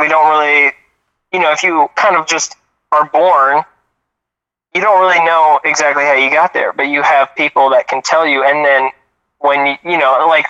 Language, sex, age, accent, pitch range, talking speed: English, male, 20-39, American, 130-155 Hz, 205 wpm